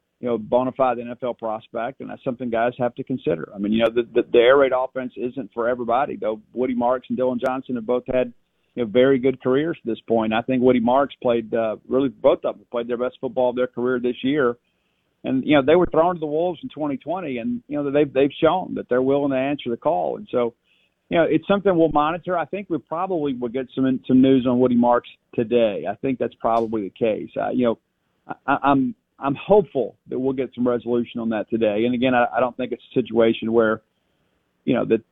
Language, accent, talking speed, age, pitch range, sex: English, American, 245 wpm, 50-69, 120-140 Hz, male